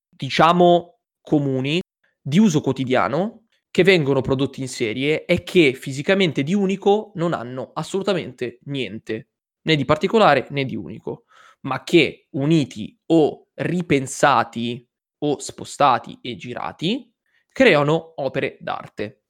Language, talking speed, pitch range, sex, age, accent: Italian, 115 wpm, 135-170 Hz, male, 20-39, native